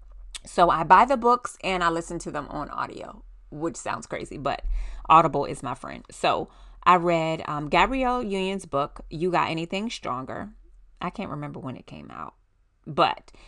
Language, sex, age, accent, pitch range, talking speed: English, female, 30-49, American, 145-185 Hz, 175 wpm